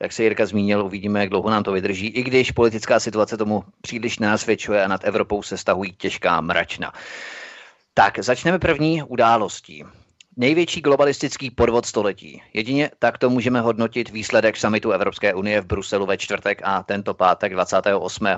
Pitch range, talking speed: 105-125 Hz, 155 wpm